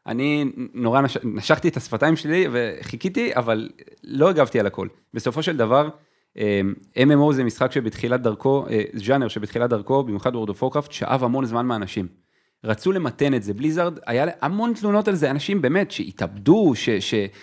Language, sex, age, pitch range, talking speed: Hebrew, male, 30-49, 115-165 Hz, 160 wpm